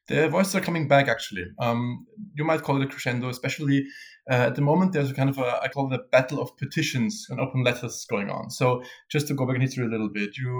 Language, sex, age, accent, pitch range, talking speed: English, male, 20-39, German, 120-150 Hz, 260 wpm